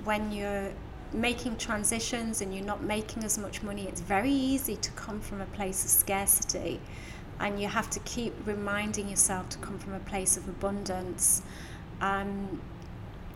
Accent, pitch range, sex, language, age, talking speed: British, 190-215 Hz, female, English, 30-49, 160 wpm